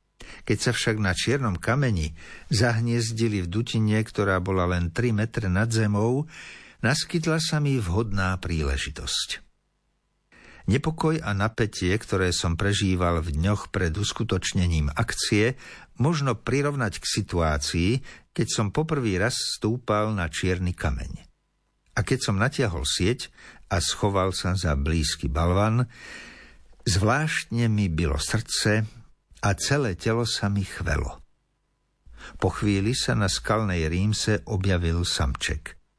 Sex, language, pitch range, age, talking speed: male, Slovak, 90-120 Hz, 60-79, 120 wpm